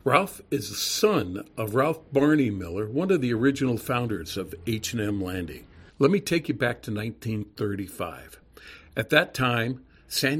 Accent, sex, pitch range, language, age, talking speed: American, male, 110-145 Hz, English, 50-69, 155 wpm